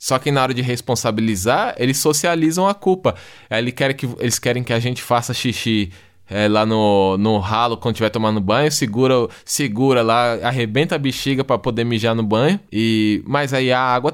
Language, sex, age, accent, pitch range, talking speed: Portuguese, male, 20-39, Brazilian, 105-135 Hz, 175 wpm